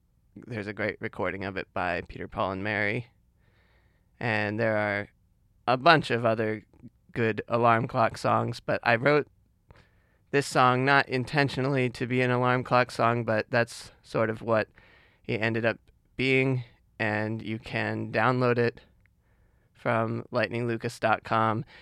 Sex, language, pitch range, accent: male, English, 105-125 Hz, American